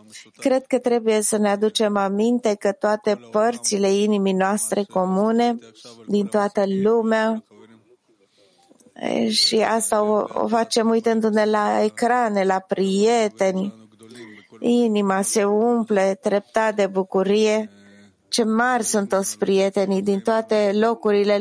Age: 30-49